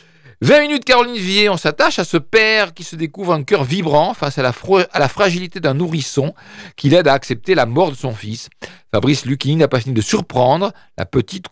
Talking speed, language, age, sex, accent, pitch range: 220 wpm, French, 50-69, male, French, 135-185 Hz